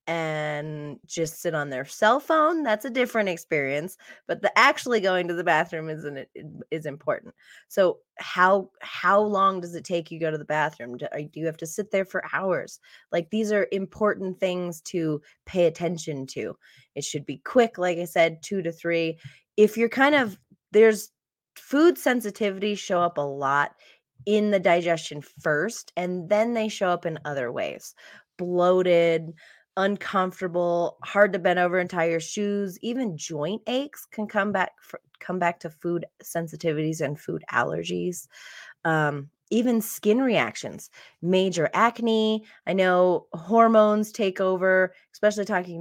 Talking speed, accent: 160 wpm, American